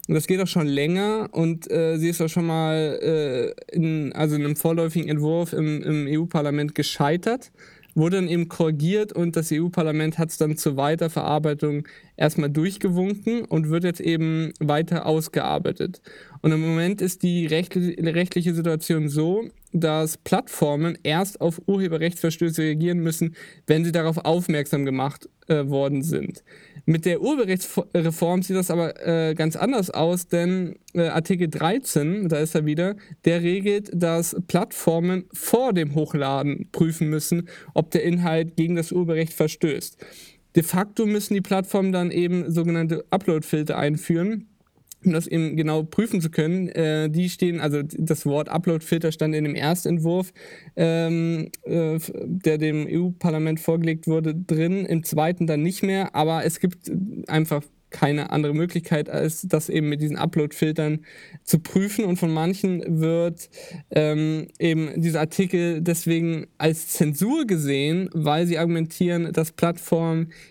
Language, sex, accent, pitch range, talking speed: German, male, German, 155-175 Hz, 145 wpm